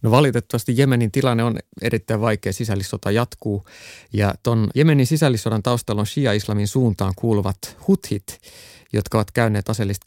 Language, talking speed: Finnish, 135 wpm